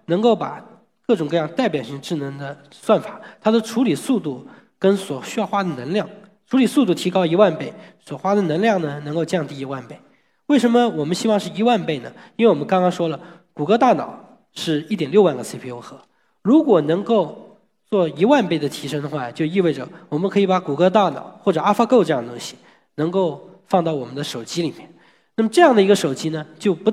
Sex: male